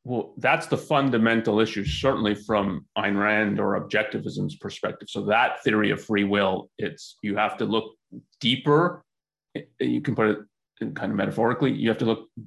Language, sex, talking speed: English, male, 170 wpm